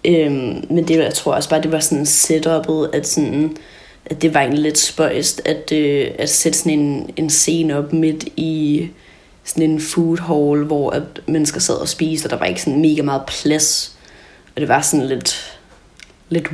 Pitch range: 150-160 Hz